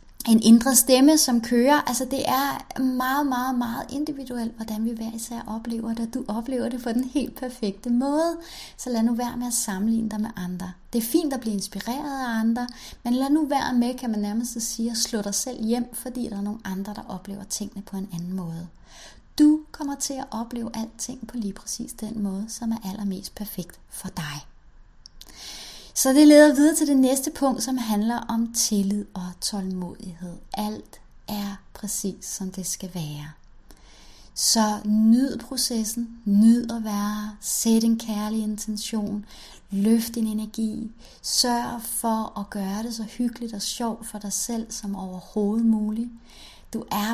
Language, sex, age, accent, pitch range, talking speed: Romanian, female, 30-49, Danish, 205-245 Hz, 175 wpm